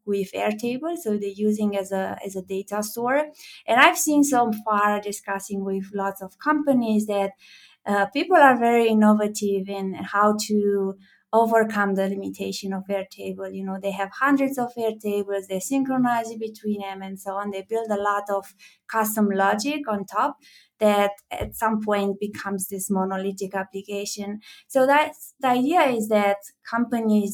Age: 20-39